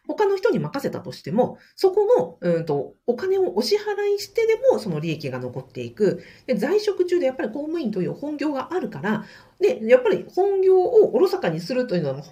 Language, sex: Japanese, female